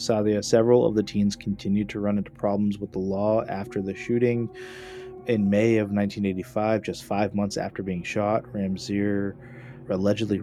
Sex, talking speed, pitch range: male, 160 wpm, 95-115 Hz